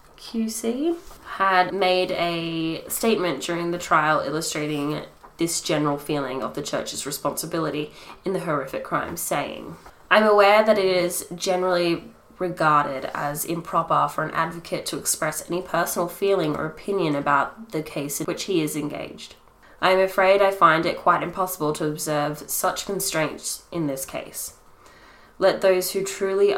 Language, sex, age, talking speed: English, female, 10-29, 150 wpm